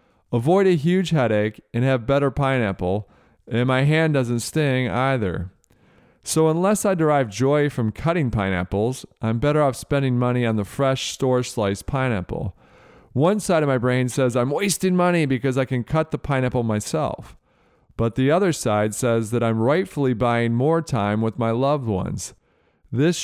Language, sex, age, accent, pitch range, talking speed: English, male, 40-59, American, 115-150 Hz, 165 wpm